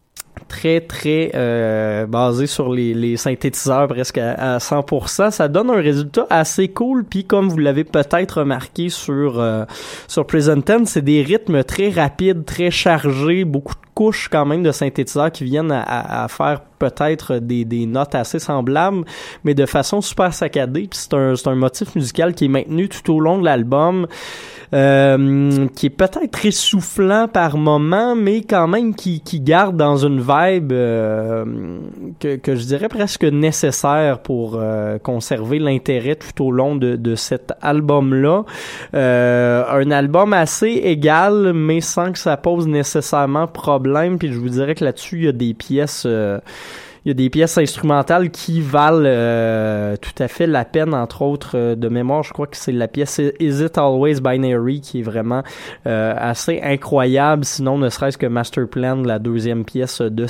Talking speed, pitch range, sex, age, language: 175 wpm, 125-165 Hz, male, 20-39, French